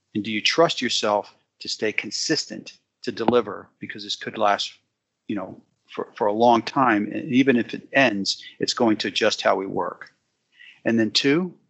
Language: English